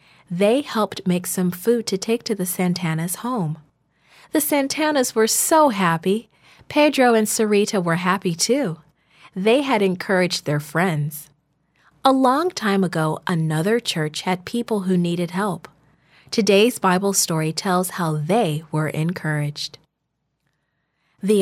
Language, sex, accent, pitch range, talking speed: English, female, American, 160-220 Hz, 130 wpm